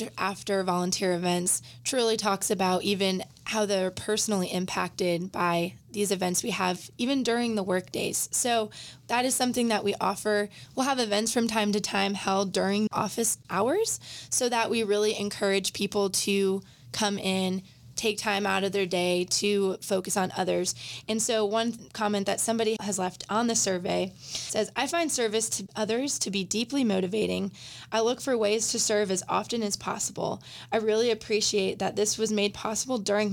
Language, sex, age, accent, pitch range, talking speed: English, female, 20-39, American, 195-225 Hz, 175 wpm